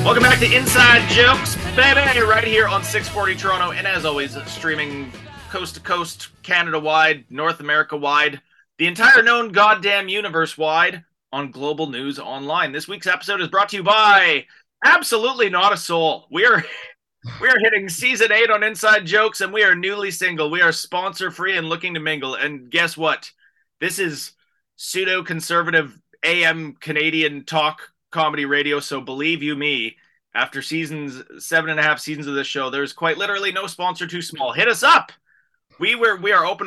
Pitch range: 150-200 Hz